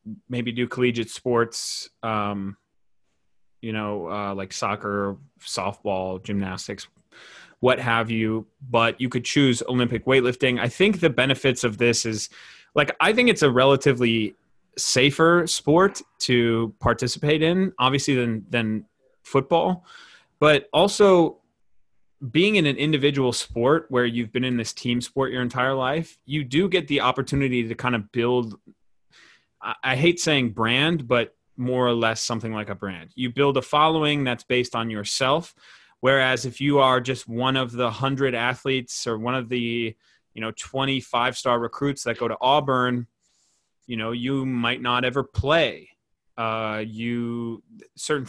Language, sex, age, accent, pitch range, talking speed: English, male, 20-39, American, 115-140 Hz, 150 wpm